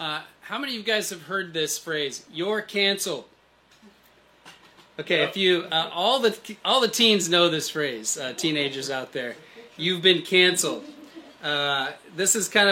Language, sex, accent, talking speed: English, male, American, 165 wpm